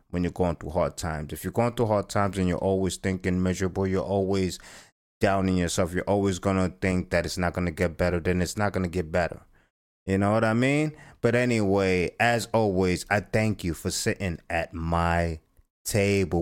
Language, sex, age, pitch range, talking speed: English, male, 30-49, 90-150 Hz, 210 wpm